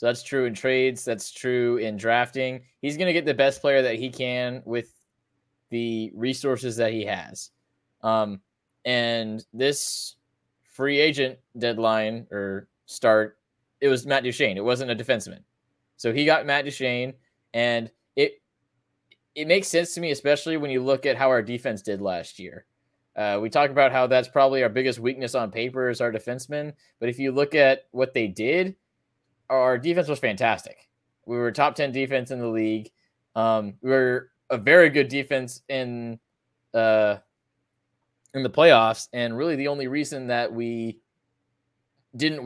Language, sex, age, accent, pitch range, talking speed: English, male, 20-39, American, 115-140 Hz, 165 wpm